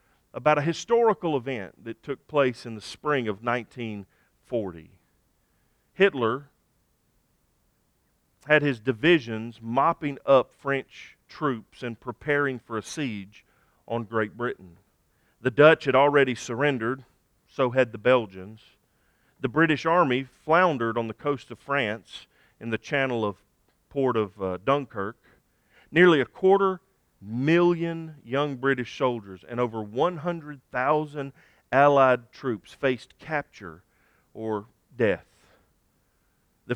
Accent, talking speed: American, 115 wpm